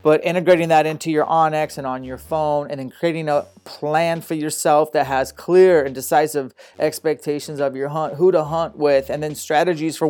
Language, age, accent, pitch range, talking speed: English, 30-49, American, 145-165 Hz, 200 wpm